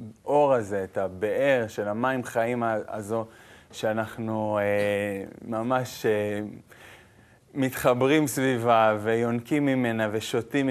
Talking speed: 95 wpm